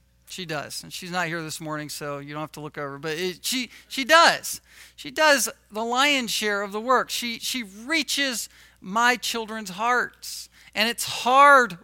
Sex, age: male, 40-59